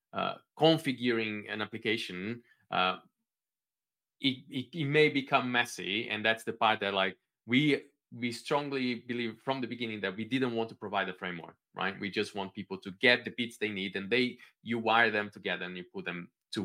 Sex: male